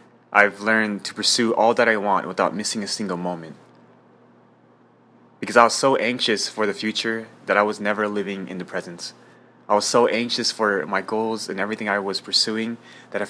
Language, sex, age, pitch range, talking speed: English, male, 20-39, 90-110 Hz, 195 wpm